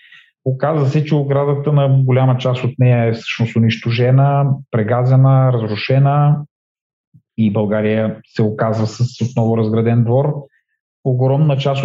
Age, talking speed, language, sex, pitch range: 40-59, 120 wpm, Bulgarian, male, 115-135 Hz